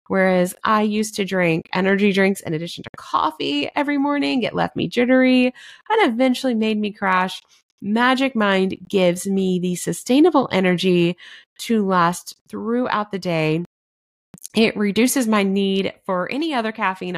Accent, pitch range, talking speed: American, 180-230 Hz, 145 wpm